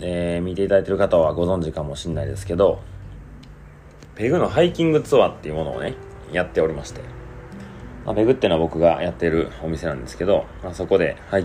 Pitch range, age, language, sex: 80-105 Hz, 30-49, Japanese, male